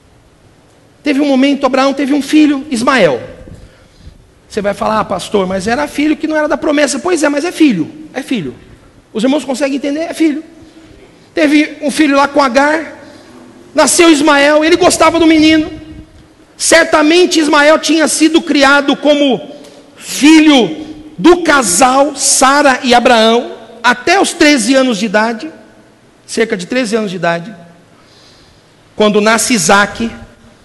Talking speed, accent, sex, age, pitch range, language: 145 wpm, Brazilian, male, 60-79, 265-320 Hz, Portuguese